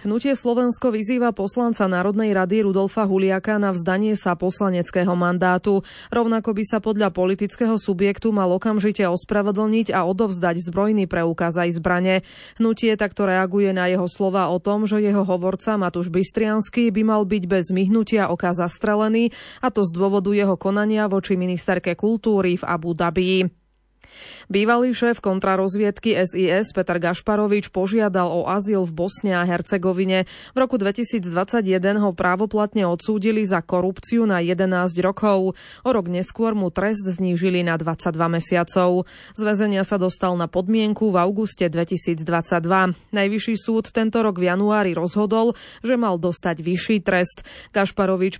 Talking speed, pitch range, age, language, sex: 140 wpm, 180-215 Hz, 20-39, Slovak, female